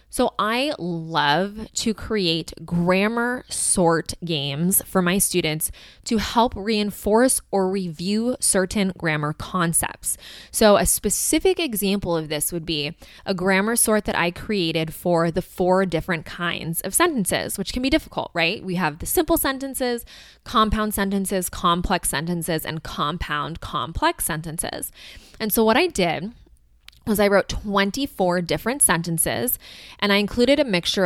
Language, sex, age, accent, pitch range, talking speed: English, female, 20-39, American, 165-215 Hz, 145 wpm